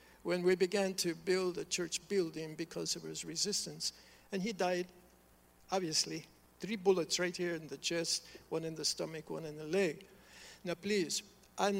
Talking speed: 175 wpm